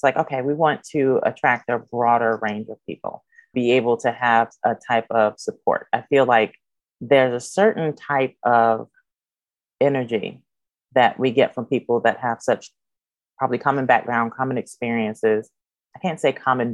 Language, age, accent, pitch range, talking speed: English, 30-49, American, 120-145 Hz, 165 wpm